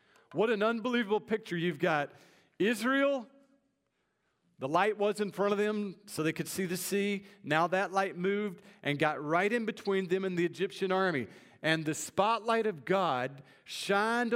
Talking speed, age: 165 wpm, 50-69